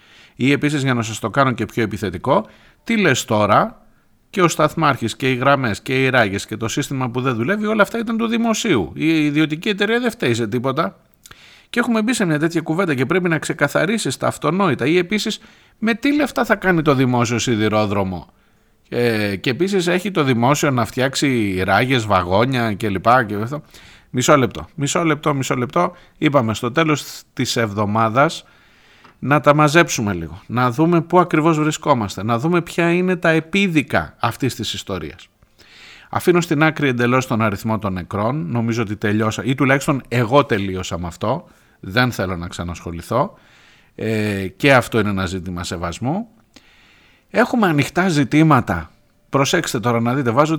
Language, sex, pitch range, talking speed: Greek, male, 110-165 Hz, 165 wpm